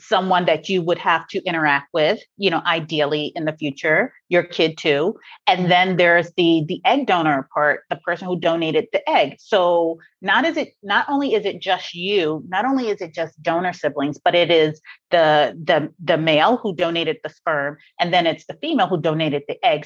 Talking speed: 205 wpm